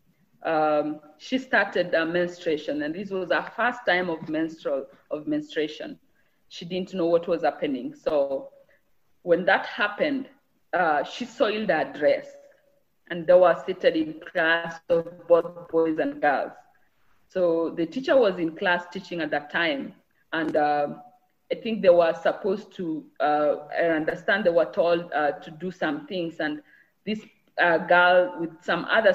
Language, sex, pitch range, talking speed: English, female, 165-245 Hz, 155 wpm